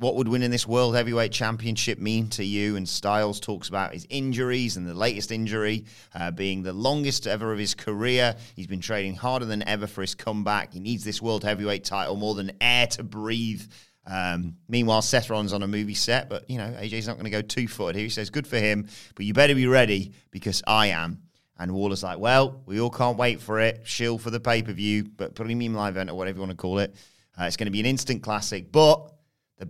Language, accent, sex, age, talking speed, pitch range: English, British, male, 30-49, 230 wpm, 95-125 Hz